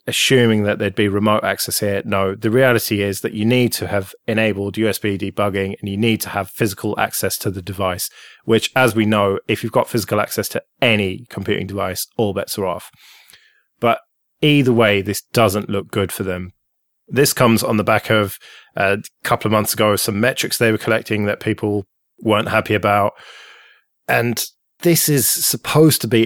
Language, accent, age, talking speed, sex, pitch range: English, British, 20-39, 190 wpm, male, 105-115 Hz